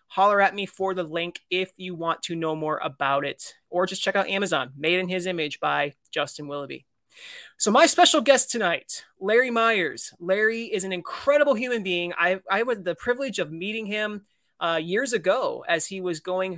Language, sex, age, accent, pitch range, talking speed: English, male, 30-49, American, 170-215 Hz, 195 wpm